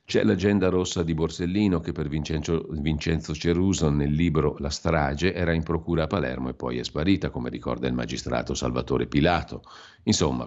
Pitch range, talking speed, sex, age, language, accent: 70-85 Hz, 165 wpm, male, 50-69, Italian, native